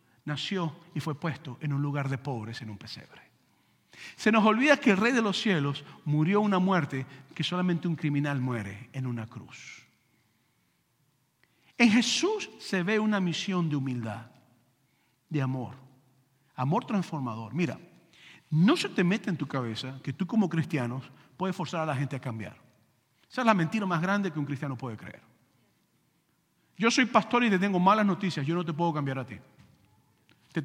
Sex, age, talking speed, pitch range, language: male, 50-69, 175 wpm, 145-215 Hz, English